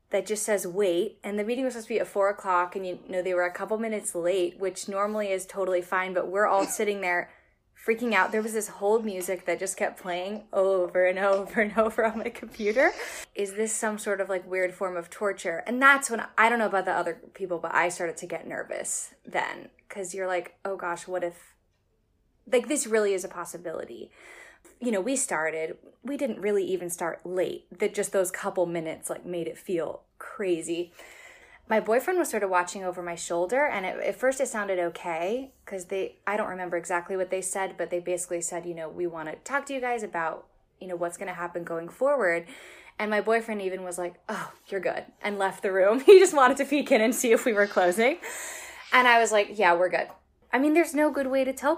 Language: English